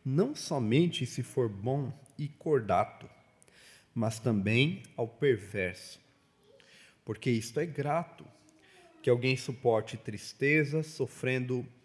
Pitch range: 115-150 Hz